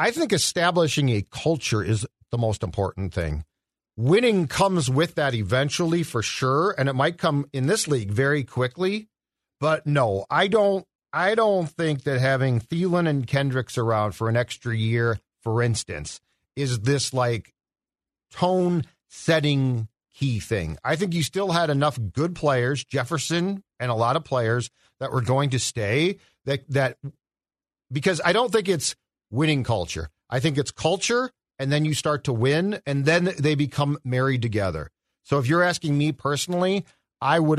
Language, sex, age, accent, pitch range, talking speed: English, male, 50-69, American, 120-160 Hz, 165 wpm